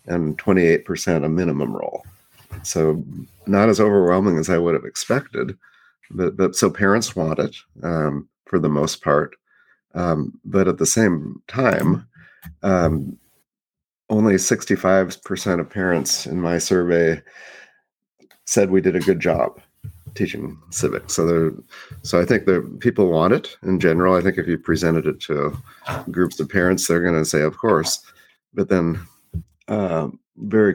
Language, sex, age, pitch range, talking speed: English, male, 40-59, 80-95 Hz, 150 wpm